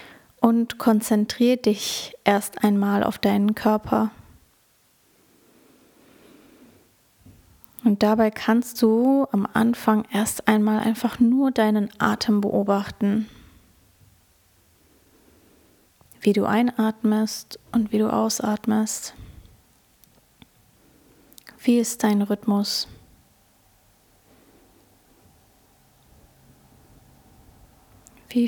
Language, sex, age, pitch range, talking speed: German, female, 20-39, 200-230 Hz, 70 wpm